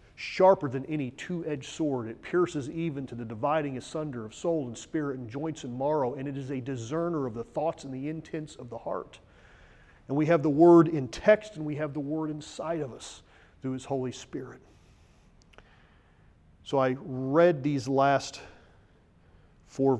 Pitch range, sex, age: 110-150 Hz, male, 40-59